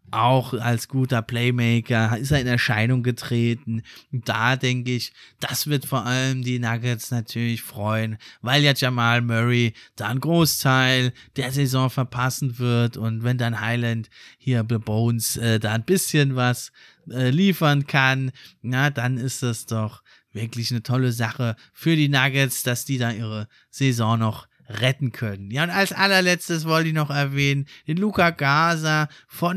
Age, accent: 20-39, German